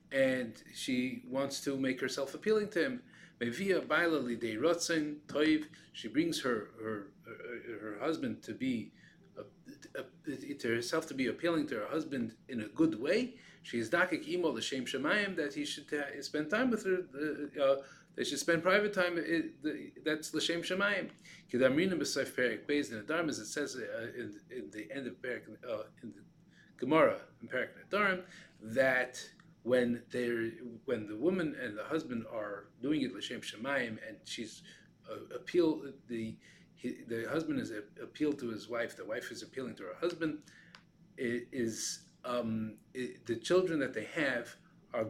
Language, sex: English, male